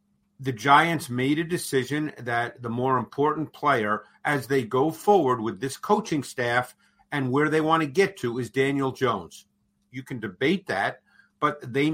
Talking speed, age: 170 wpm, 50-69